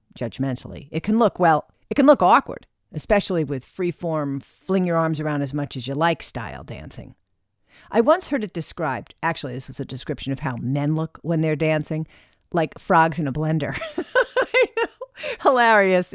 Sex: female